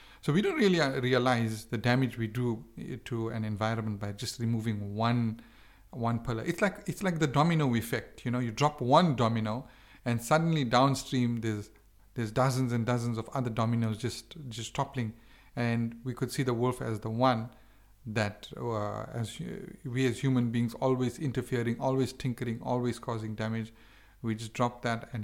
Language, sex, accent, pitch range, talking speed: English, male, Indian, 110-145 Hz, 175 wpm